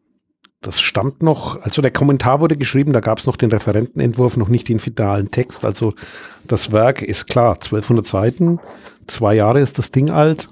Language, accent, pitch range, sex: German, German, 100-140 Hz, male